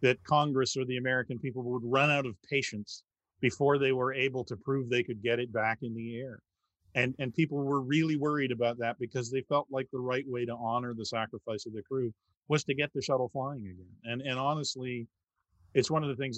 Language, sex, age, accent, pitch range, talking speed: English, male, 40-59, American, 115-145 Hz, 225 wpm